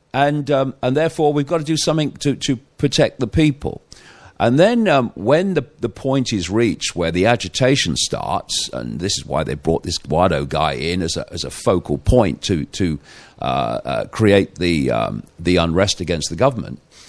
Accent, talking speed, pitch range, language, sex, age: British, 195 wpm, 85-125 Hz, English, male, 50-69